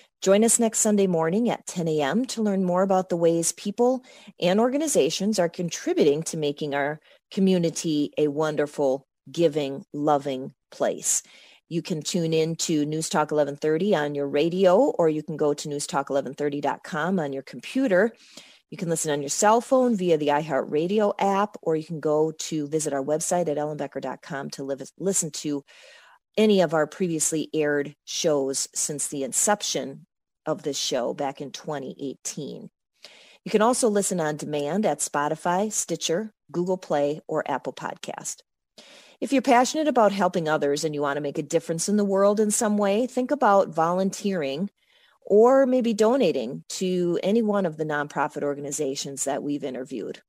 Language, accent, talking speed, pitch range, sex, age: English, American, 160 wpm, 145-200 Hz, female, 40-59